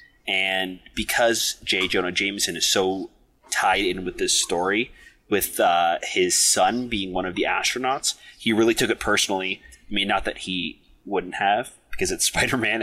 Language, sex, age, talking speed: English, male, 30-49, 170 wpm